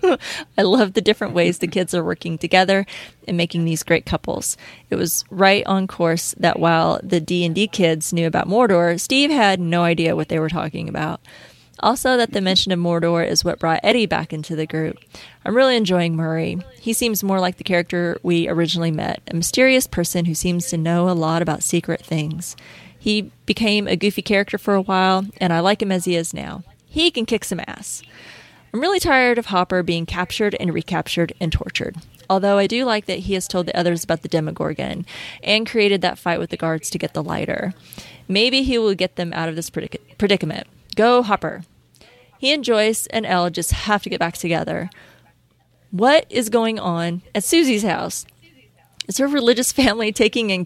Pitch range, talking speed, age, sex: 170-220 Hz, 200 wpm, 30-49, female